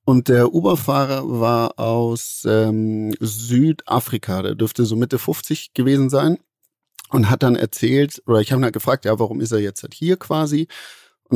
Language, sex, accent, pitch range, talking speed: German, male, German, 110-130 Hz, 175 wpm